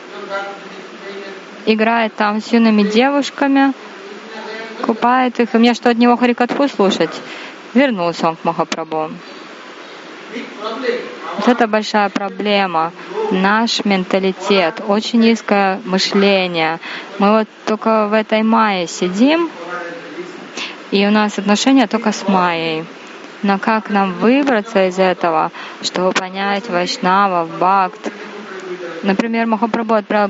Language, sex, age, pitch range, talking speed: Russian, female, 20-39, 185-225 Hz, 110 wpm